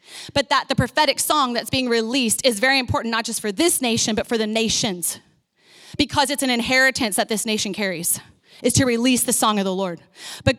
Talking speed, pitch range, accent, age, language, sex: 210 wpm, 235-300 Hz, American, 30-49, English, female